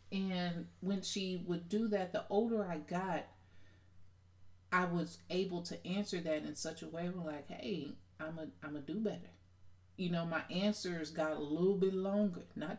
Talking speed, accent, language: 185 wpm, American, English